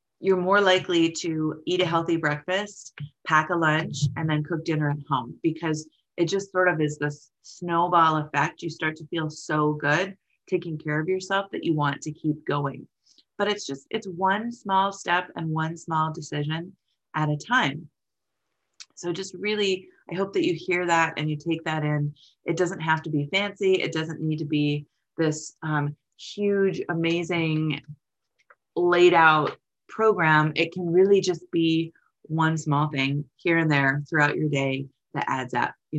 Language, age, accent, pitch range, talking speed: English, 30-49, American, 150-180 Hz, 175 wpm